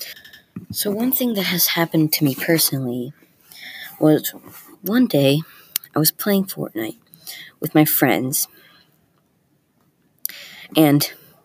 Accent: American